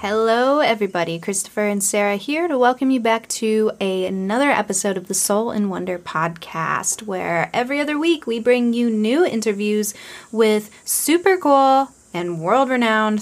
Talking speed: 155 wpm